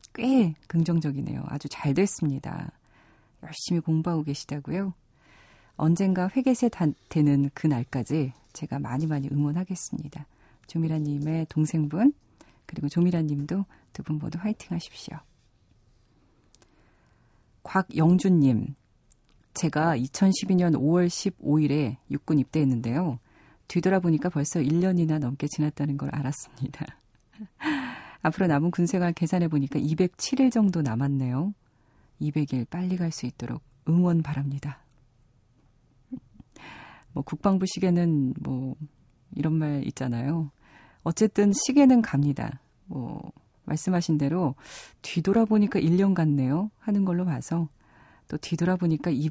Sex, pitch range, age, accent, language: female, 140-175 Hz, 40-59, native, Korean